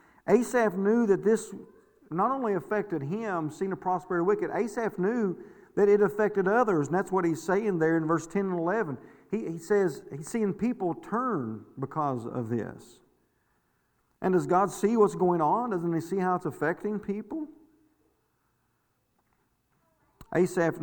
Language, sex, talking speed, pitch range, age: English, male, 160 wpm, 150-195 Hz, 50-69